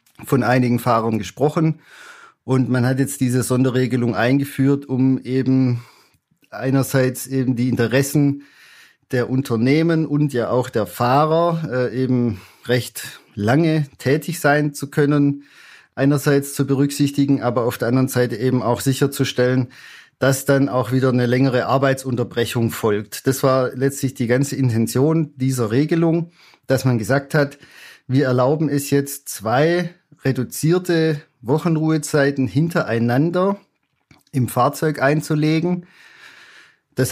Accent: German